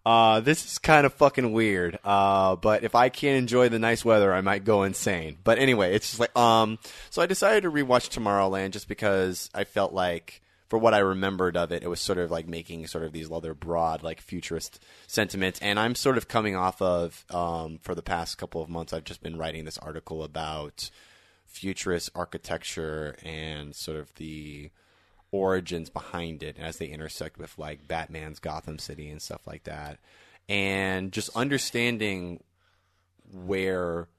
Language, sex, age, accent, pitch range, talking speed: English, male, 20-39, American, 80-100 Hz, 180 wpm